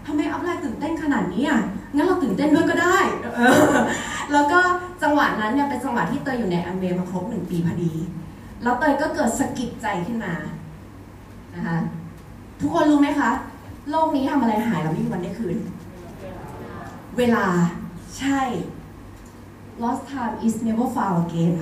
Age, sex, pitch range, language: 20-39, female, 185-285 Hz, Thai